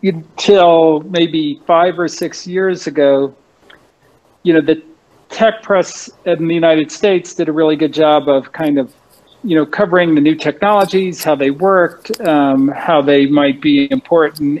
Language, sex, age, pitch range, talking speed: Portuguese, male, 50-69, 145-185 Hz, 160 wpm